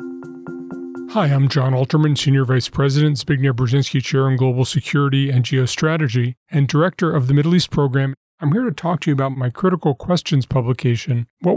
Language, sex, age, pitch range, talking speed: English, male, 40-59, 135-170 Hz, 175 wpm